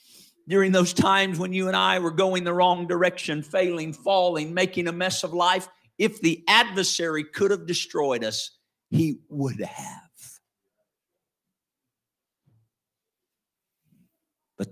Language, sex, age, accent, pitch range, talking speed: English, male, 50-69, American, 110-175 Hz, 120 wpm